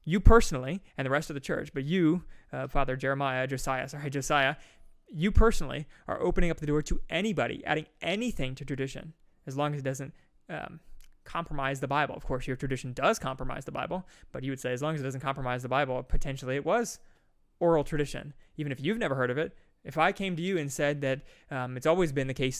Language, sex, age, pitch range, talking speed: English, male, 20-39, 135-160 Hz, 225 wpm